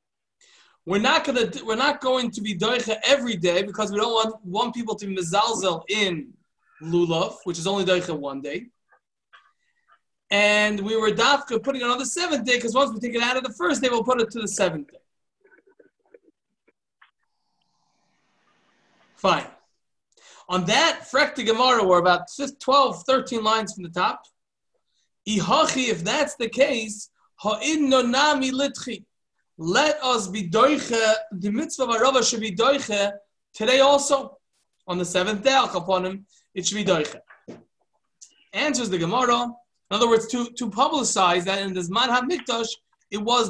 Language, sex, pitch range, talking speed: English, male, 205-275 Hz, 150 wpm